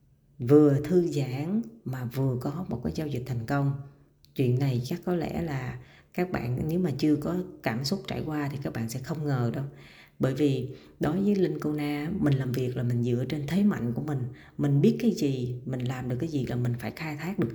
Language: Vietnamese